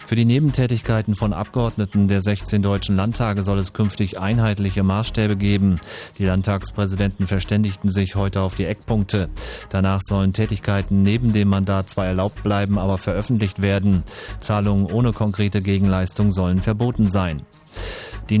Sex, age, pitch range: male, 30-49, 95-105 Hz